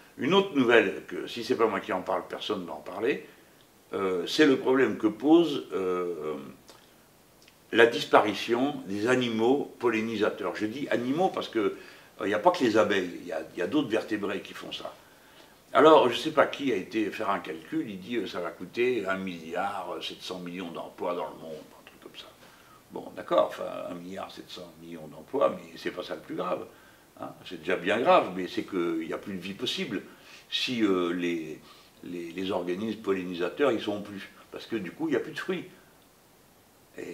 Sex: male